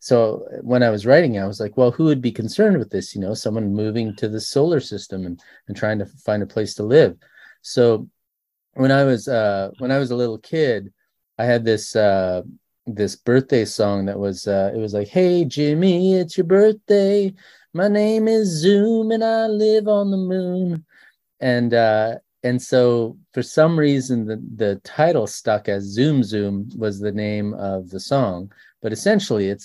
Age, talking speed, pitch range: 30-49, 190 wpm, 105-130 Hz